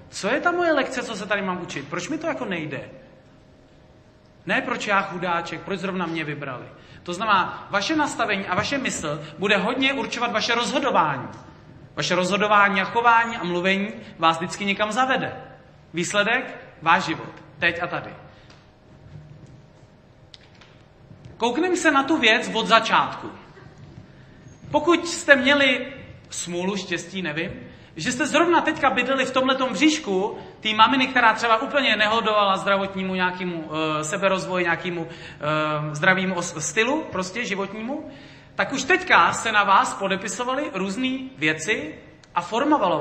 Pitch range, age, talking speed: 165-245 Hz, 40-59, 140 wpm